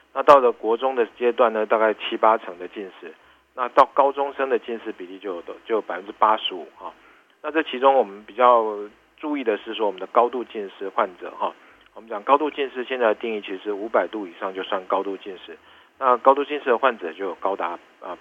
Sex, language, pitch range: male, Chinese, 110-140 Hz